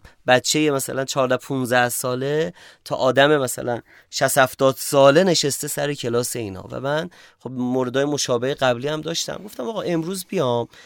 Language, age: Persian, 30-49